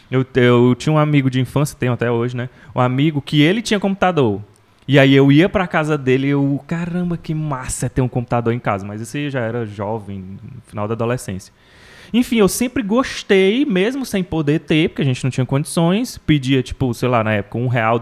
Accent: Brazilian